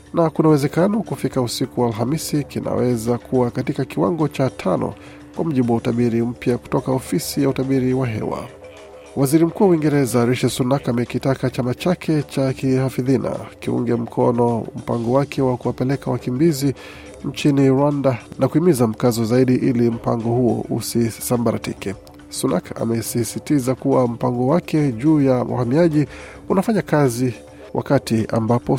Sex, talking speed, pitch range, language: male, 140 wpm, 120-140 Hz, Swahili